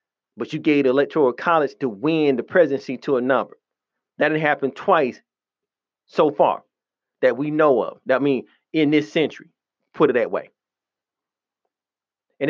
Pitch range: 135-180 Hz